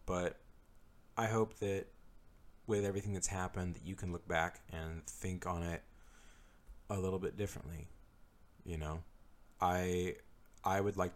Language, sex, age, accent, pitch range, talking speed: English, male, 30-49, American, 85-100 Hz, 145 wpm